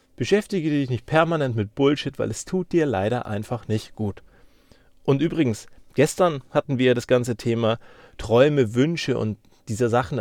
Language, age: German, 40-59